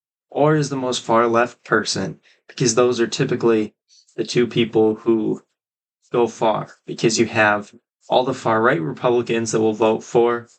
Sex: male